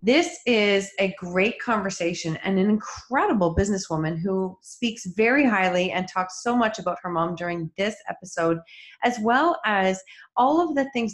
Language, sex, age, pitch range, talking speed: English, female, 30-49, 180-235 Hz, 160 wpm